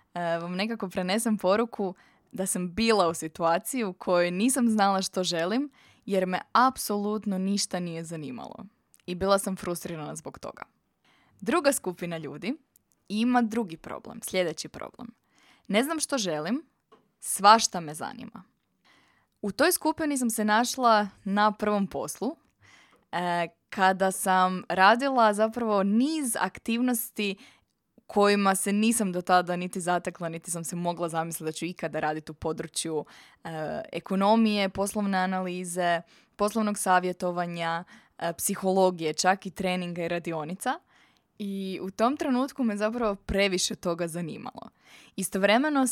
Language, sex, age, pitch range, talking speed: Croatian, female, 20-39, 175-220 Hz, 130 wpm